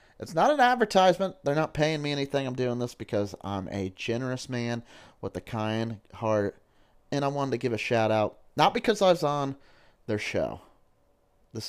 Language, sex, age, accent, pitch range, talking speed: English, male, 30-49, American, 110-135 Hz, 185 wpm